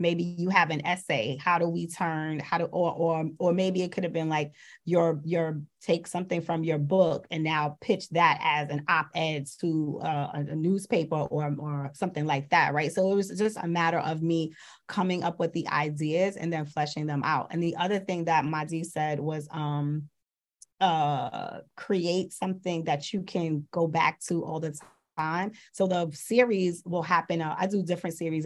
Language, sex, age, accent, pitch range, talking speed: English, female, 30-49, American, 155-180 Hz, 195 wpm